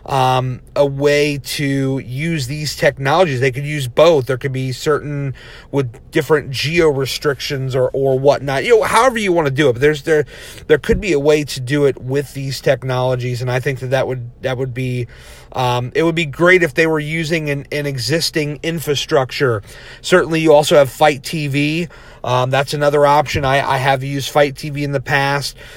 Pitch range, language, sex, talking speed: 130-150 Hz, English, male, 200 wpm